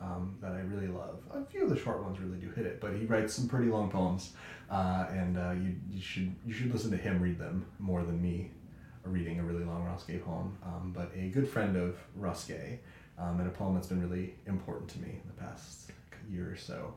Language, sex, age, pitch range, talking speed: English, male, 30-49, 90-115 Hz, 235 wpm